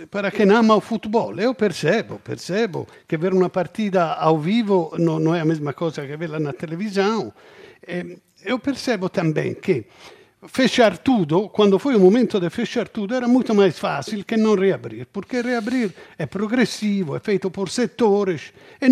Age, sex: 50-69, male